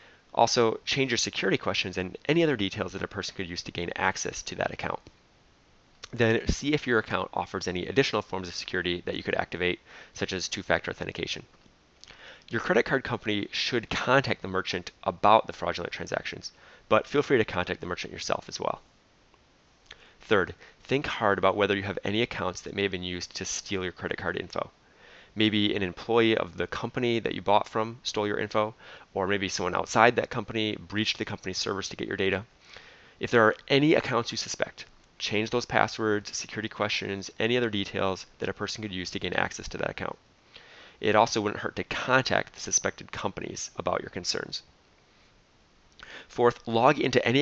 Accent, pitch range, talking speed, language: American, 95-115 Hz, 190 wpm, English